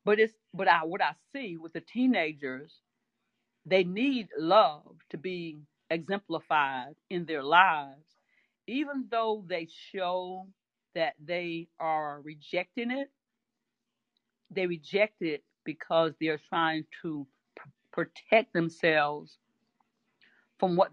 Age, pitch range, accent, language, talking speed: 40-59, 155-190 Hz, American, English, 110 wpm